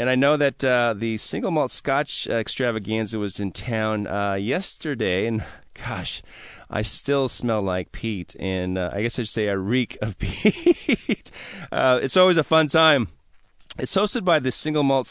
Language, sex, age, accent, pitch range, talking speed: English, male, 30-49, American, 105-125 Hz, 180 wpm